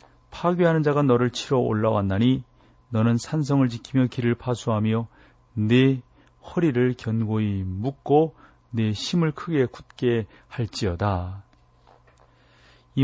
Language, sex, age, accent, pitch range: Korean, male, 40-59, native, 105-130 Hz